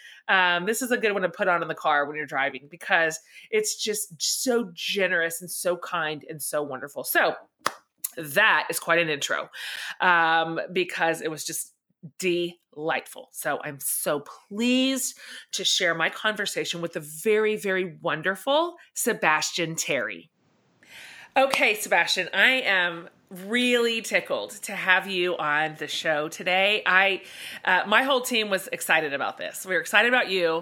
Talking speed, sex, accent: 155 wpm, female, American